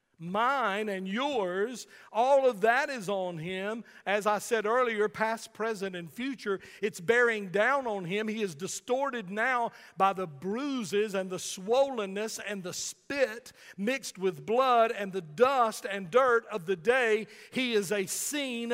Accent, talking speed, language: American, 160 wpm, English